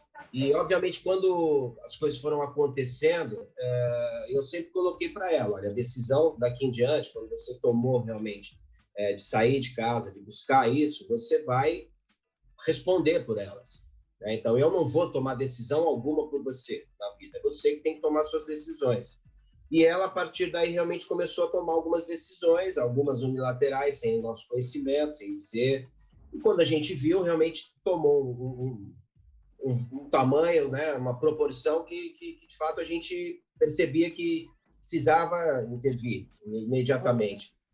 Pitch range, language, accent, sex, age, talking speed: 125-185 Hz, English, Brazilian, male, 30-49, 150 wpm